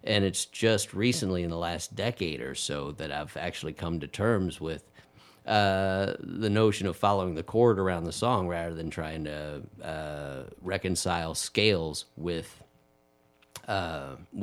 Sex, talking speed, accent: male, 150 wpm, American